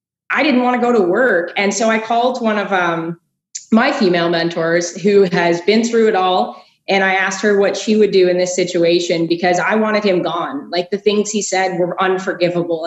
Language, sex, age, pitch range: English, female, 20-39, 180-220 Hz